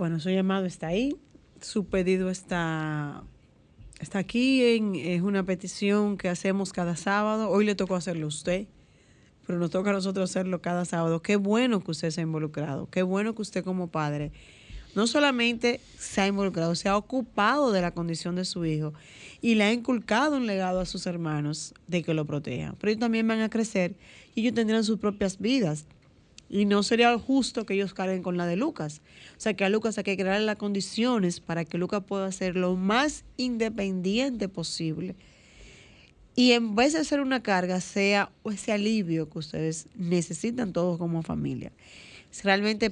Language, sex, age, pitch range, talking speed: Spanish, female, 30-49, 175-215 Hz, 180 wpm